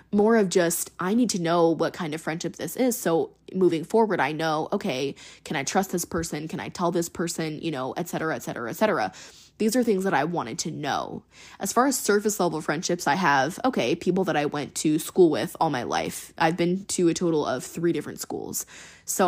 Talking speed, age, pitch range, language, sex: 230 wpm, 20-39, 160-190 Hz, English, female